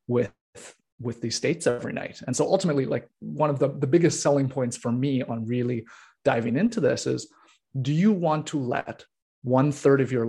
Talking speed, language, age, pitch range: 200 wpm, English, 30-49, 120-150 Hz